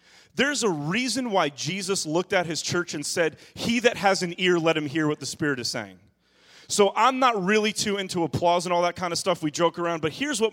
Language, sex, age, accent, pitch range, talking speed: English, male, 30-49, American, 160-215 Hz, 245 wpm